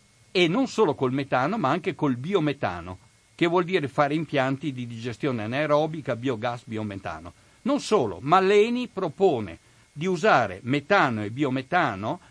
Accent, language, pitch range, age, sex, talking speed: native, Italian, 115-170 Hz, 60-79, male, 140 wpm